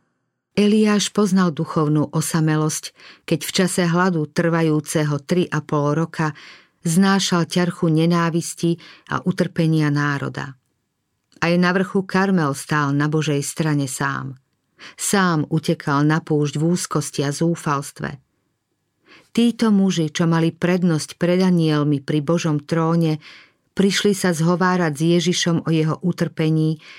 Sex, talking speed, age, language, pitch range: female, 120 wpm, 50-69, Slovak, 150-180 Hz